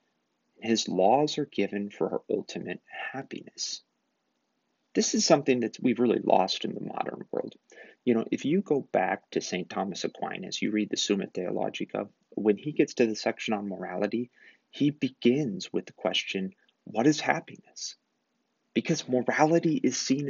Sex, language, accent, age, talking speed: male, English, American, 30-49, 160 wpm